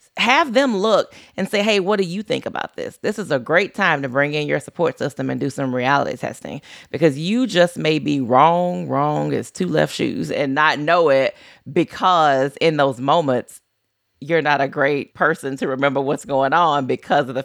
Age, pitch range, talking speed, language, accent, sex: 30-49, 145-195 Hz, 205 wpm, English, American, female